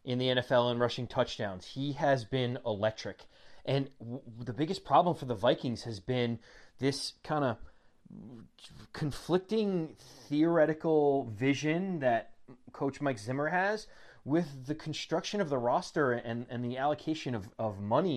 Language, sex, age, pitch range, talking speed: English, male, 30-49, 120-150 Hz, 145 wpm